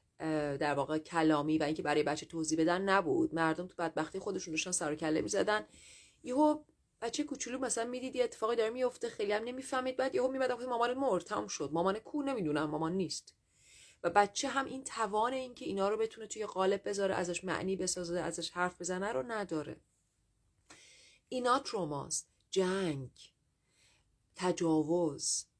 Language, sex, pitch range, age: Persian, female, 150-205 Hz, 30-49